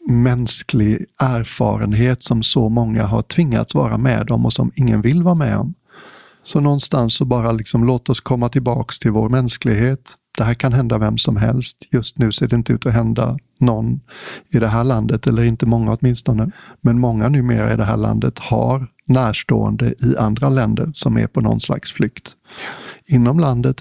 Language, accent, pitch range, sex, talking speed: English, Swedish, 115-130 Hz, male, 180 wpm